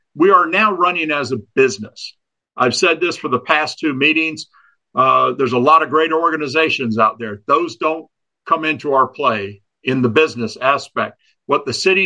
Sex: male